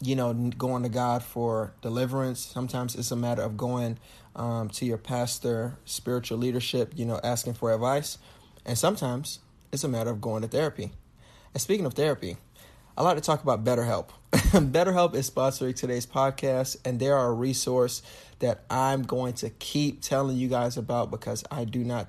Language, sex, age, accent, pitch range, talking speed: English, male, 30-49, American, 115-130 Hz, 175 wpm